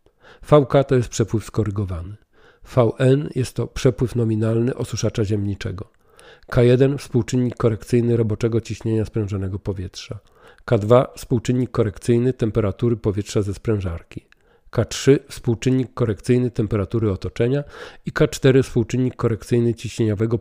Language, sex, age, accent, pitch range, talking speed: Polish, male, 40-59, native, 100-120 Hz, 105 wpm